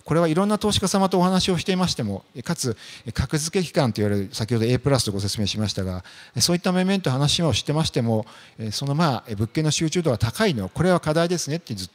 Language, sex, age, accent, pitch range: Japanese, male, 50-69, native, 115-170 Hz